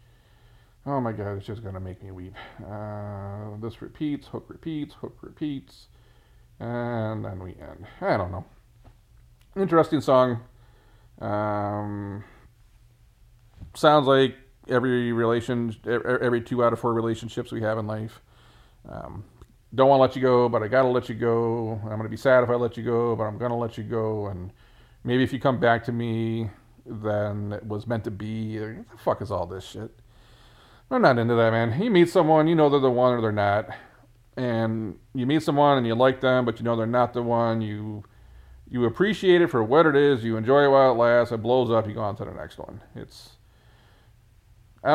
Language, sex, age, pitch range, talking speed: English, male, 40-59, 110-130 Hz, 200 wpm